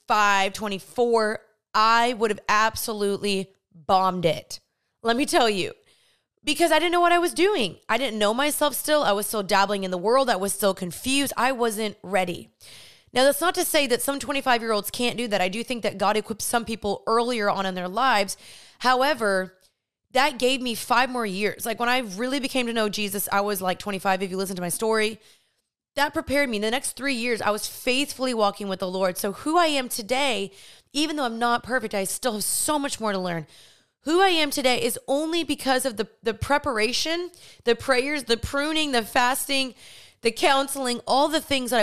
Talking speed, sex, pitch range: 210 wpm, female, 205-270 Hz